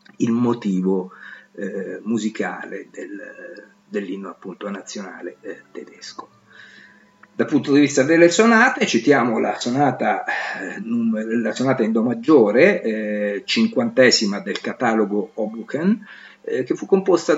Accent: native